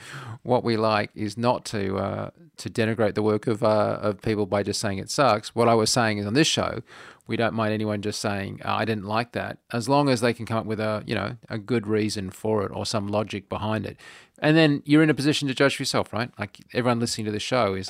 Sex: male